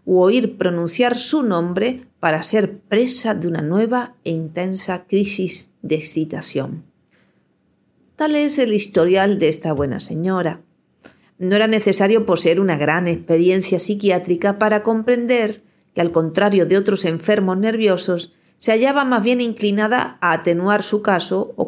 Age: 40-59